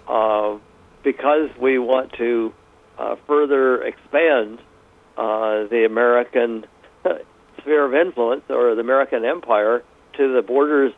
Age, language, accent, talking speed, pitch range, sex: 60-79, English, American, 115 wpm, 130-185 Hz, male